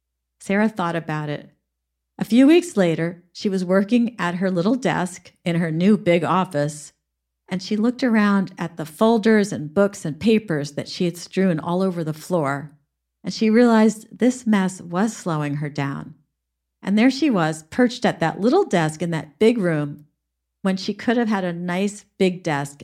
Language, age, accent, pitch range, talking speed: English, 50-69, American, 155-210 Hz, 185 wpm